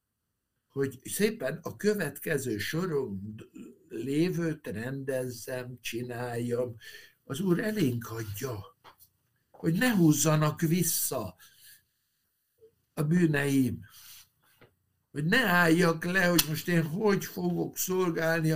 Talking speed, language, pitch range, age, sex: 90 wpm, Hungarian, 120-165 Hz, 60-79, male